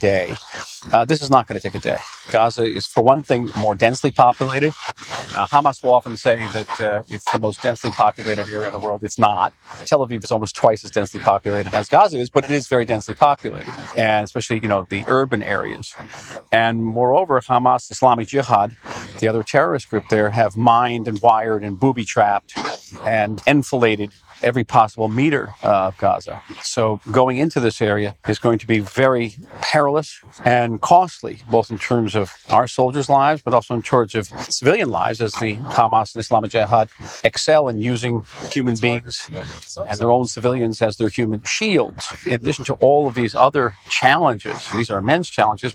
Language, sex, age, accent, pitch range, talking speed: English, male, 40-59, American, 105-130 Hz, 185 wpm